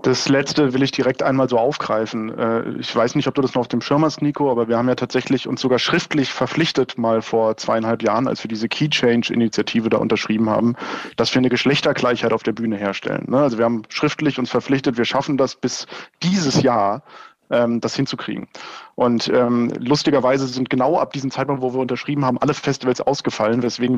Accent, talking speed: German, 195 wpm